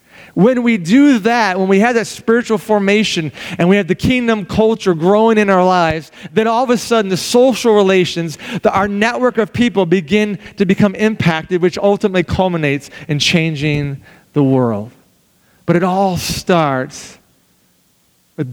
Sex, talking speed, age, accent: male, 155 wpm, 40-59, American